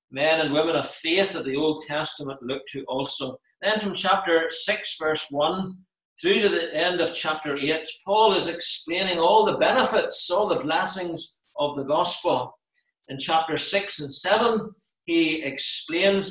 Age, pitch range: 50-69, 140-195 Hz